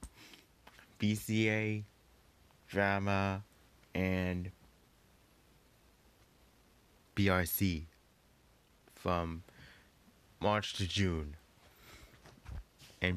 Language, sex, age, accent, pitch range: English, male, 20-39, American, 90-105 Hz